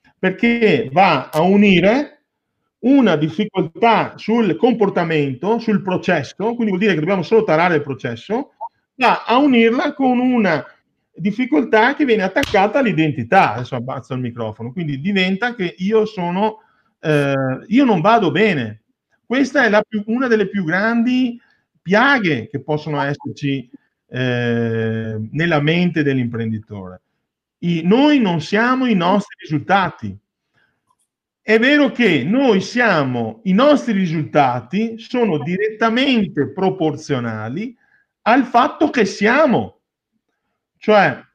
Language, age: Italian, 40-59